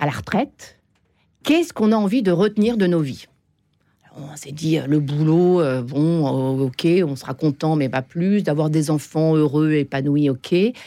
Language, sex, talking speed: French, female, 180 wpm